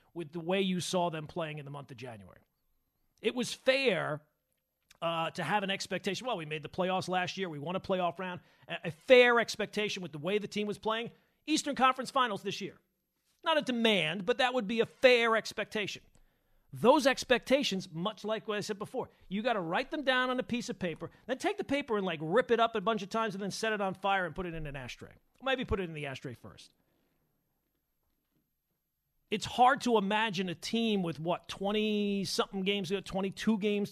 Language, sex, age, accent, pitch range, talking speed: English, male, 40-59, American, 175-240 Hz, 215 wpm